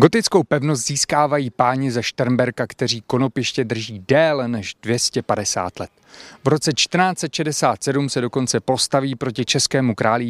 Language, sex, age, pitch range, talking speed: Czech, male, 30-49, 115-140 Hz, 130 wpm